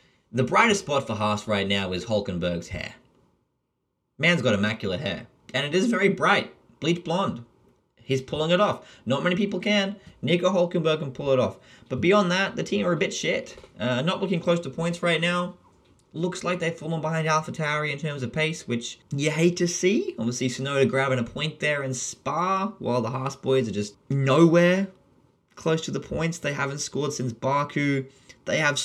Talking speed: 195 wpm